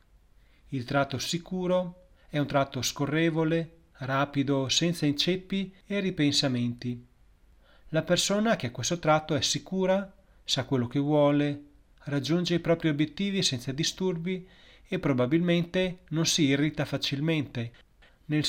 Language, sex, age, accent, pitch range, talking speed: Italian, male, 30-49, native, 135-170 Hz, 120 wpm